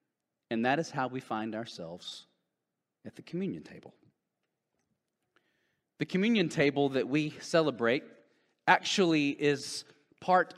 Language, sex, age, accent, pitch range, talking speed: English, male, 40-59, American, 125-160 Hz, 115 wpm